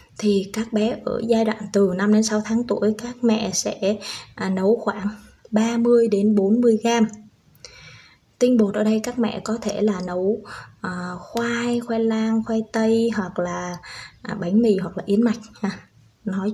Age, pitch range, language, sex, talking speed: 20-39, 190-225 Hz, Vietnamese, female, 165 wpm